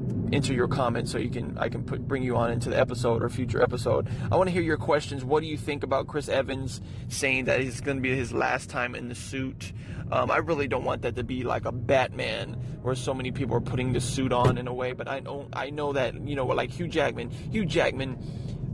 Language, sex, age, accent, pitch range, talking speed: English, male, 20-39, American, 125-150 Hz, 255 wpm